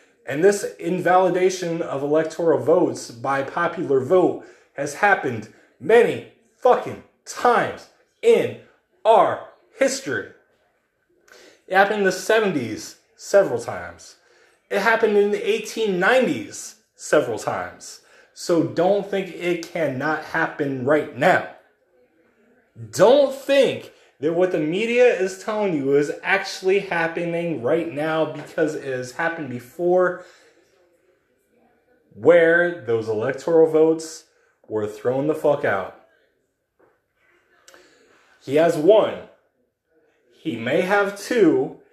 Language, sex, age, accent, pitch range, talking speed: English, male, 30-49, American, 160-245 Hz, 105 wpm